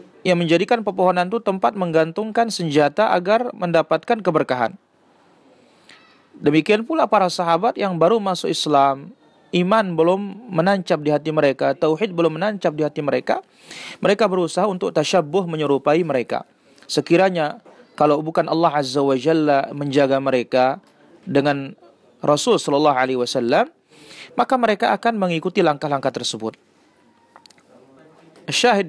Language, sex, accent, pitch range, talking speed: Indonesian, male, native, 145-200 Hz, 115 wpm